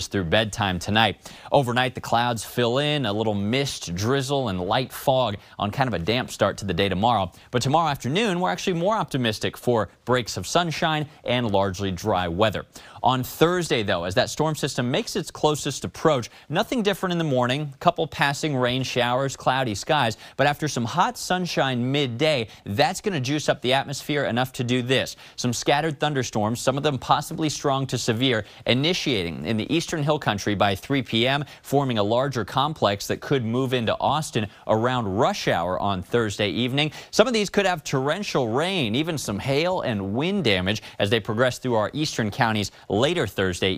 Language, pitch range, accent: English, 105-150 Hz, American